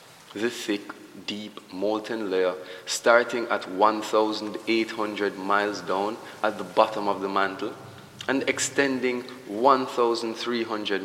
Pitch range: 105-130 Hz